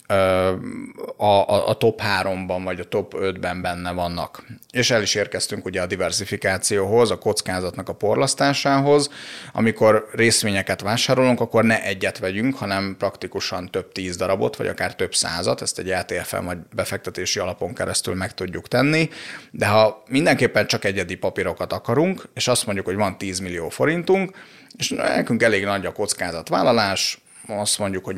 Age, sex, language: 30-49, male, Hungarian